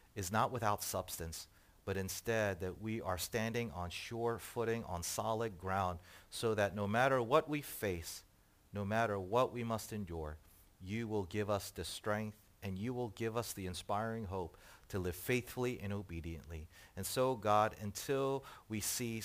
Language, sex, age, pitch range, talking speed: English, male, 40-59, 95-120 Hz, 170 wpm